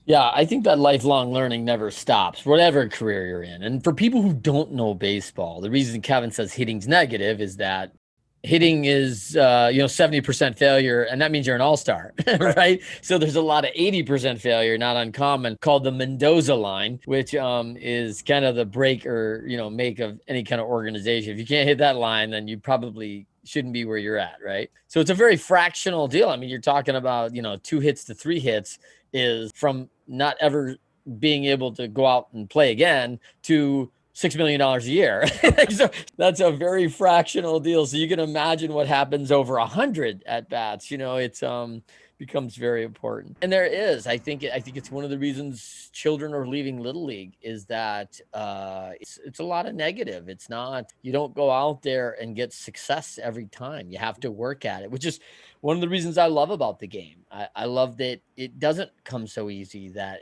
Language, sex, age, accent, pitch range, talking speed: English, male, 30-49, American, 115-150 Hz, 210 wpm